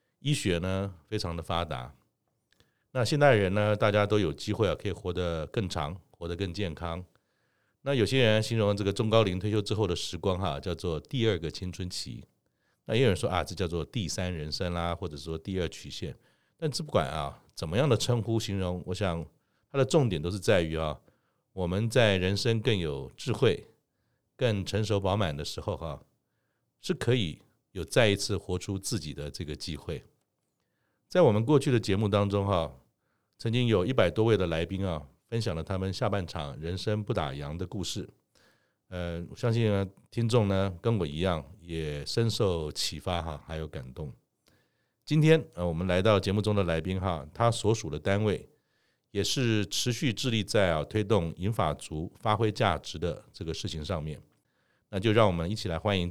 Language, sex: Chinese, male